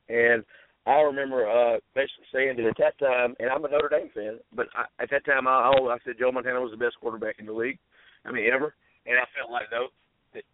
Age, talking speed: 50-69, 240 wpm